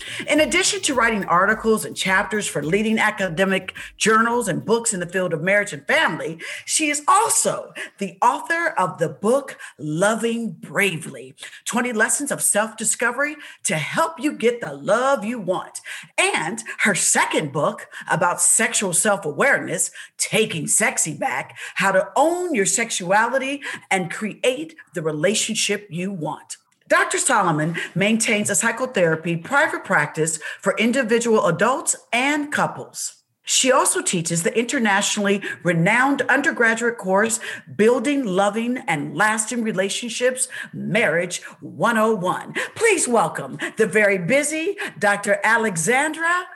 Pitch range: 190-275 Hz